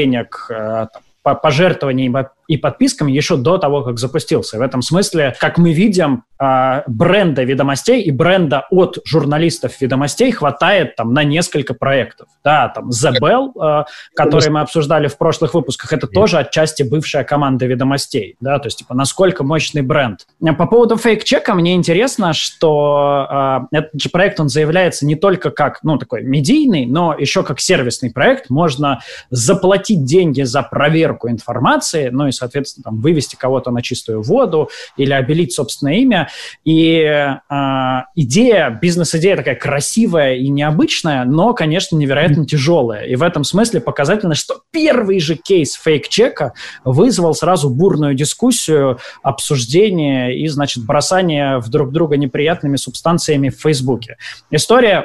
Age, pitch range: 20-39, 135-170 Hz